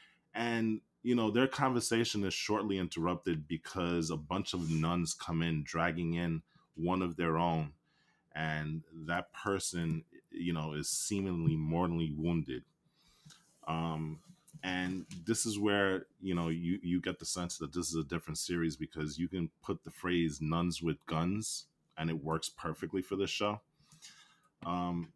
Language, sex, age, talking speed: English, male, 20-39, 155 wpm